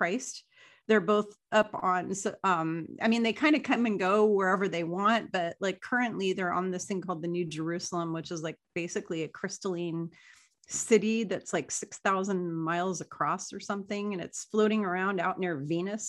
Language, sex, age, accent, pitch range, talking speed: English, female, 30-49, American, 180-230 Hz, 185 wpm